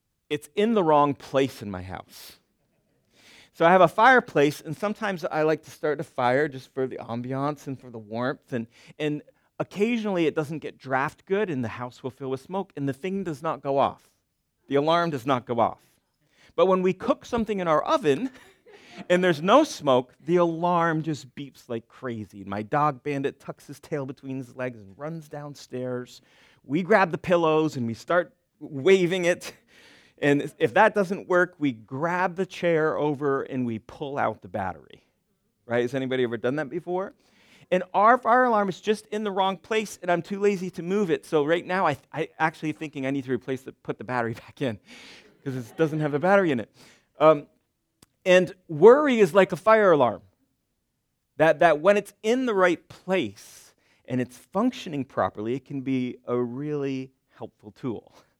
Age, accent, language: 40-59, American, English